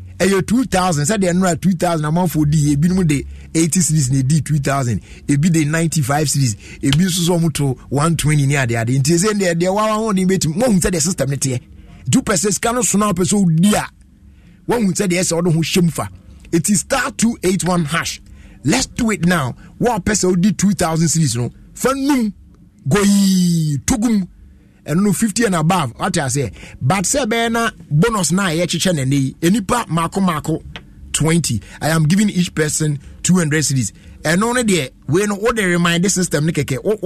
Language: English